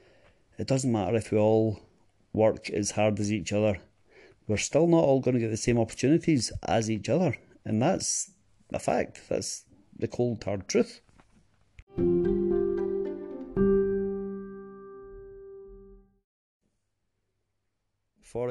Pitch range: 100-115 Hz